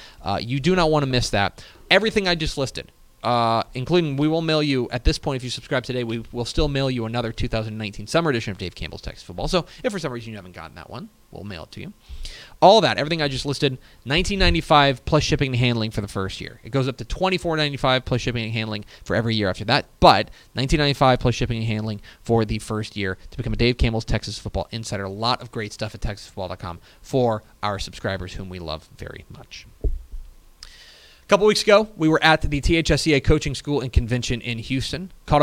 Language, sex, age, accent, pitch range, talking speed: English, male, 30-49, American, 105-140 Hz, 220 wpm